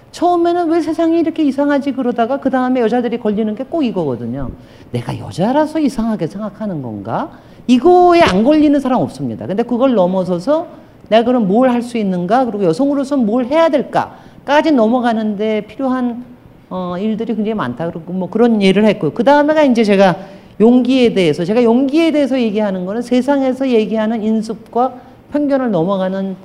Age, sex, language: 40-59, male, Korean